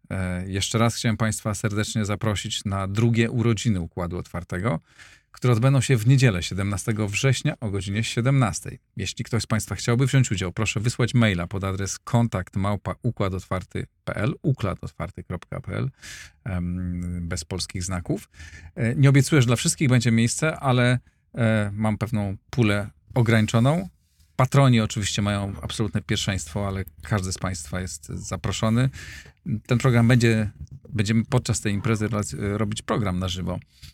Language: Polish